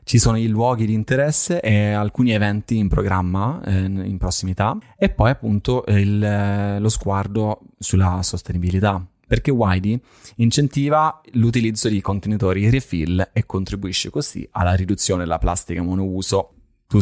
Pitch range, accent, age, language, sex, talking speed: 95-120 Hz, native, 20-39, Italian, male, 140 wpm